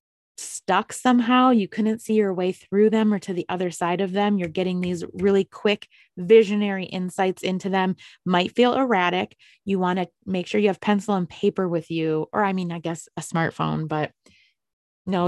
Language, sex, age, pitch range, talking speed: English, female, 20-39, 170-210 Hz, 195 wpm